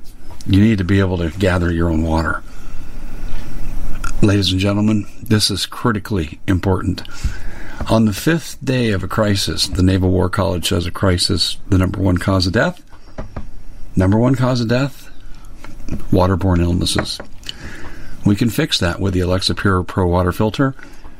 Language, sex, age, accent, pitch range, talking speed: English, male, 50-69, American, 90-110 Hz, 155 wpm